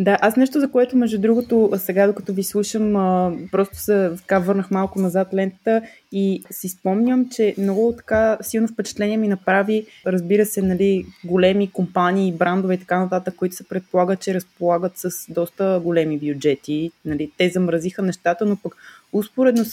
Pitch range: 180-200 Hz